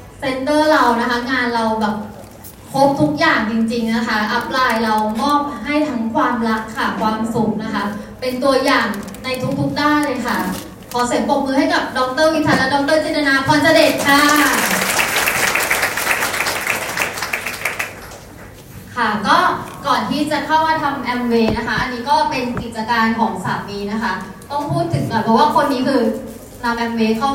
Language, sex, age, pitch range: Thai, female, 20-39, 225-285 Hz